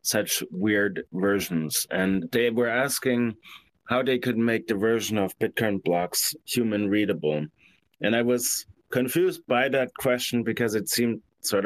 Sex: male